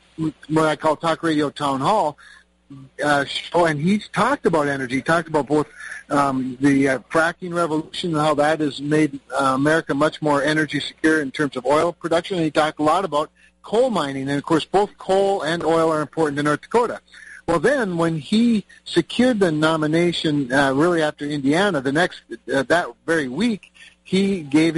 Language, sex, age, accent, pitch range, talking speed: English, male, 50-69, American, 145-170 Hz, 185 wpm